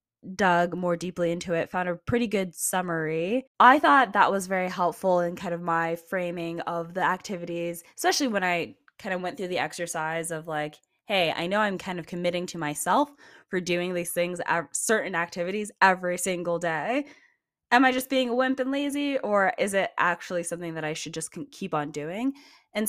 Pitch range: 165-210 Hz